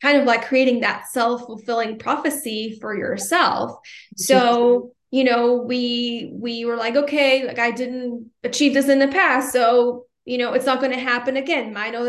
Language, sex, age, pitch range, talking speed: English, female, 10-29, 230-260 Hz, 175 wpm